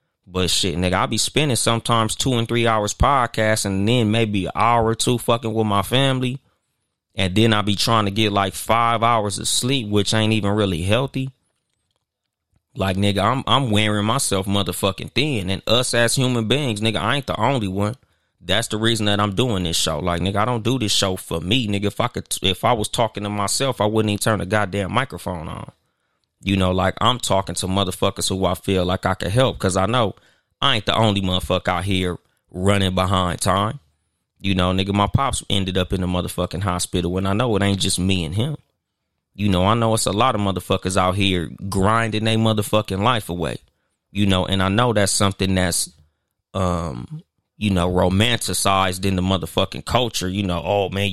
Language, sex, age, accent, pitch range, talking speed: English, male, 20-39, American, 95-115 Hz, 210 wpm